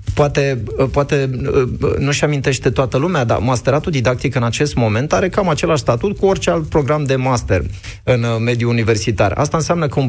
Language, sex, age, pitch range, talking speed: Romanian, male, 30-49, 115-165 Hz, 175 wpm